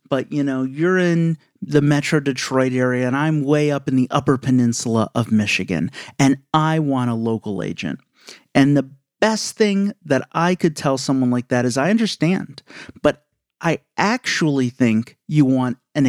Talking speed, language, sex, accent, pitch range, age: 170 wpm, English, male, American, 125-160 Hz, 40-59